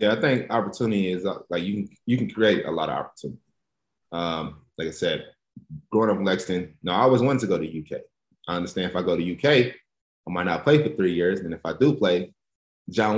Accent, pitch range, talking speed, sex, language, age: American, 90-105 Hz, 230 wpm, male, English, 20-39